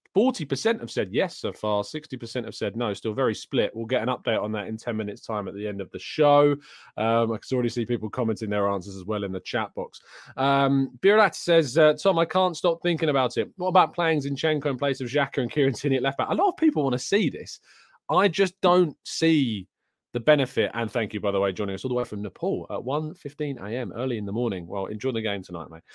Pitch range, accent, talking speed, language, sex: 105-145 Hz, British, 245 wpm, English, male